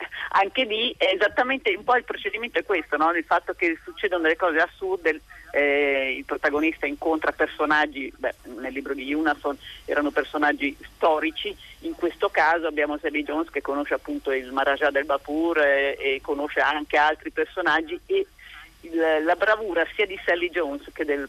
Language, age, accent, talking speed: Italian, 40-59, native, 170 wpm